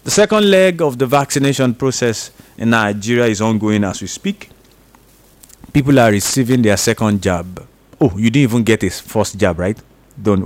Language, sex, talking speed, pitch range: English, male, 170 wpm, 105-150 Hz